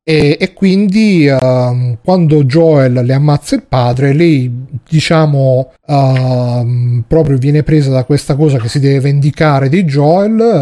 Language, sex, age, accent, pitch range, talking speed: Italian, male, 30-49, native, 135-165 Hz, 140 wpm